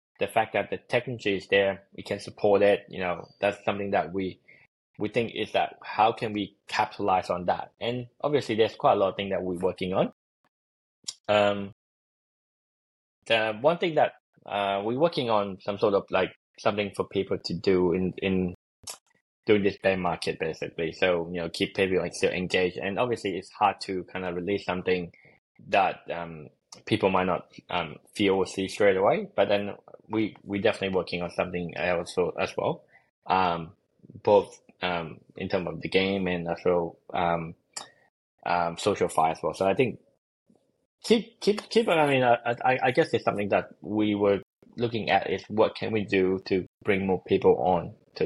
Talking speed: 185 wpm